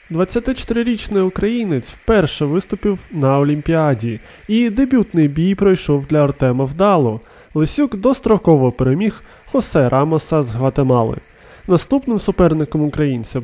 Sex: male